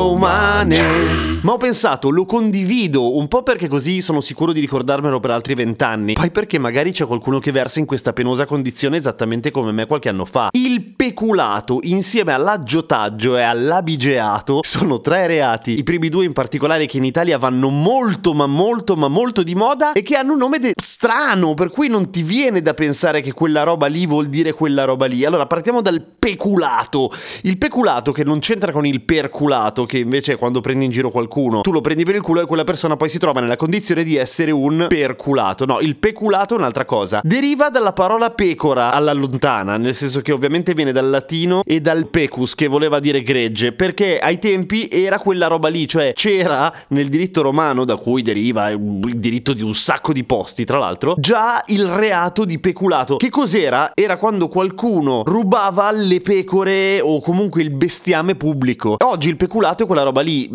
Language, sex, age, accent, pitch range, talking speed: Italian, male, 30-49, native, 130-185 Hz, 190 wpm